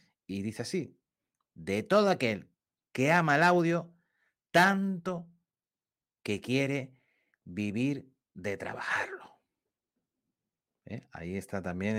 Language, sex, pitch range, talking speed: Spanish, male, 115-175 Hz, 100 wpm